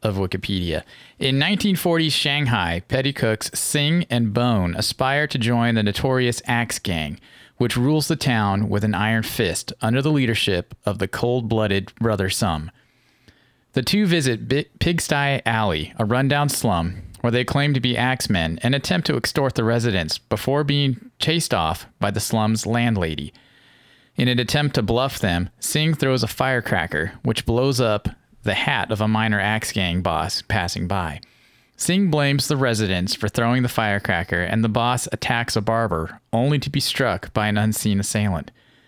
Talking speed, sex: 165 wpm, male